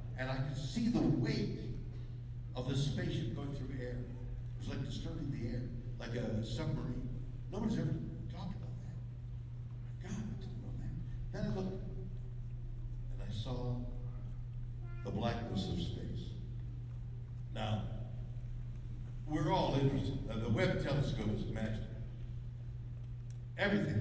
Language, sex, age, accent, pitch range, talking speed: English, male, 60-79, American, 120-125 Hz, 135 wpm